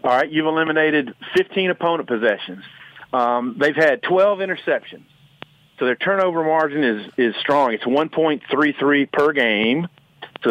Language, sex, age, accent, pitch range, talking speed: English, male, 50-69, American, 125-160 Hz, 155 wpm